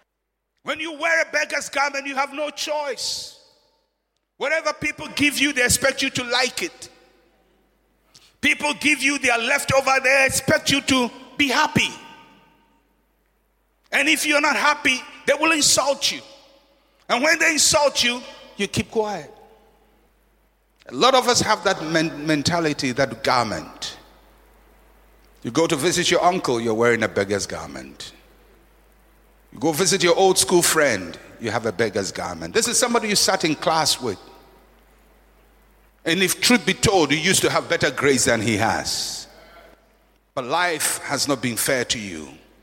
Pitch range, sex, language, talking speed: 175-290 Hz, male, English, 155 wpm